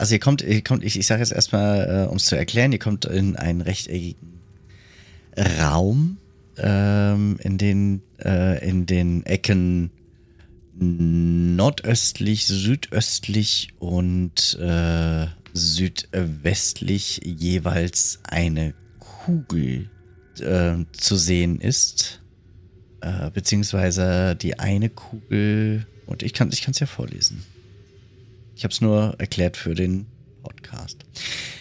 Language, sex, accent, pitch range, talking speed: German, male, German, 90-115 Hz, 105 wpm